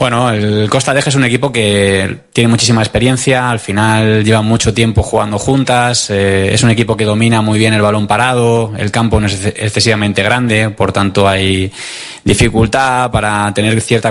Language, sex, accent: Spanish, male, Spanish